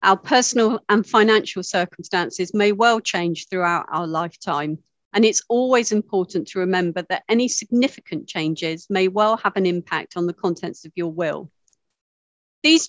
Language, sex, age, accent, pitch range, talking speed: English, female, 50-69, British, 175-230 Hz, 155 wpm